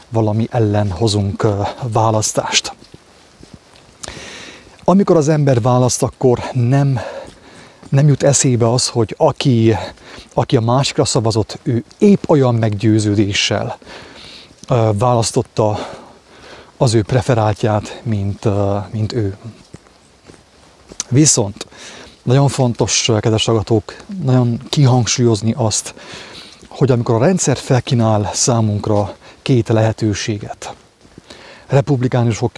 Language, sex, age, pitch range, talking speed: English, male, 30-49, 110-130 Hz, 90 wpm